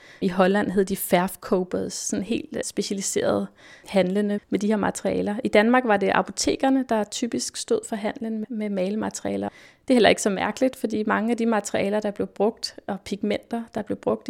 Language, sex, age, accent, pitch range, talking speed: Danish, female, 30-49, native, 190-220 Hz, 185 wpm